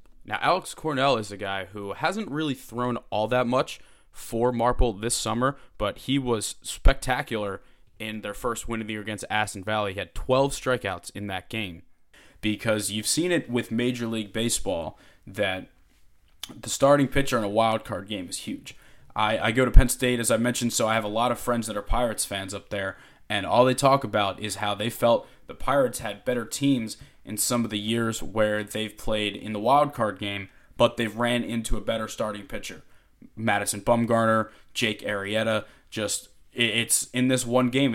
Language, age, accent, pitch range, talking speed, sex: English, 20-39, American, 105-125 Hz, 195 wpm, male